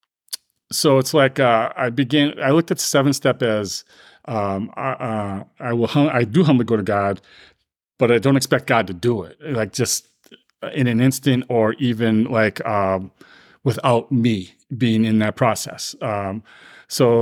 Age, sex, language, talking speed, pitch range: 40-59, male, English, 180 wpm, 110-135 Hz